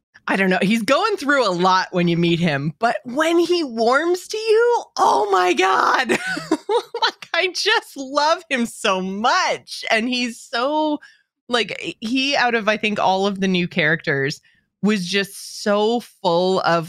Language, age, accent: English, 20-39, American